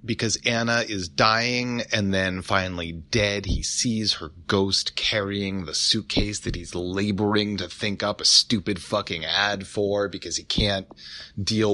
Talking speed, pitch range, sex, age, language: 155 wpm, 90-115 Hz, male, 30-49, English